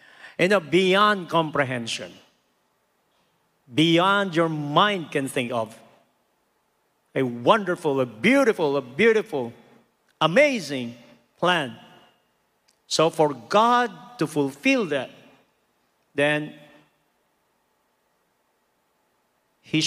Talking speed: 75 wpm